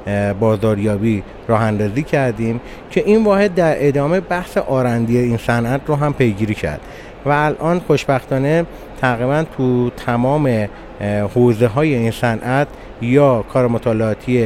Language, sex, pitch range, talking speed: Persian, male, 115-145 Hz, 115 wpm